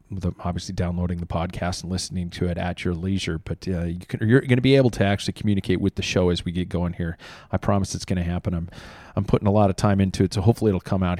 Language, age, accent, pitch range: English, 40-59, American, 90-105 Hz